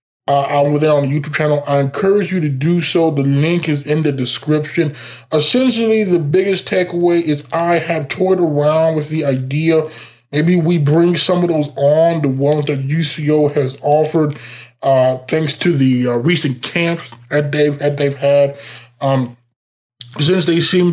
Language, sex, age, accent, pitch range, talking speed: English, male, 20-39, American, 125-160 Hz, 175 wpm